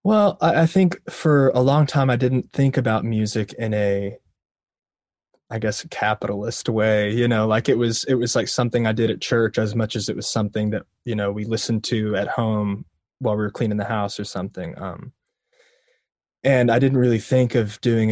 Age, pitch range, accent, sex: 20-39, 105-125 Hz, American, male